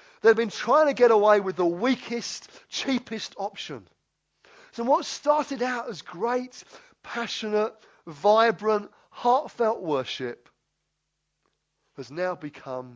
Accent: British